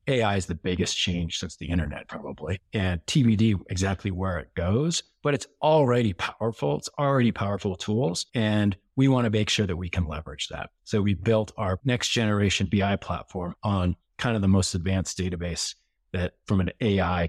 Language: English